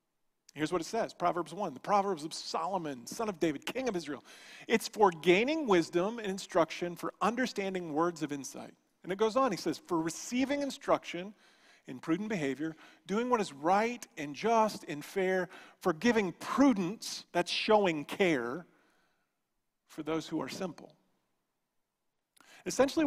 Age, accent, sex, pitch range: 40-59, American, male, 160-215 Hz